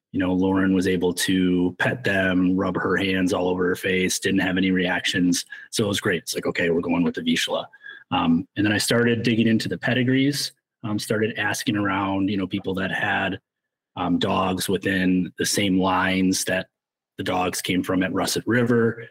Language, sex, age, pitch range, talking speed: English, male, 30-49, 95-120 Hz, 200 wpm